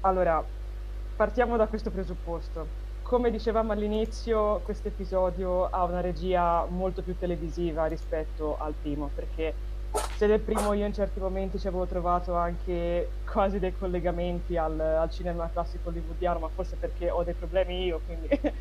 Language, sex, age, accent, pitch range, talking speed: Italian, female, 20-39, native, 165-205 Hz, 150 wpm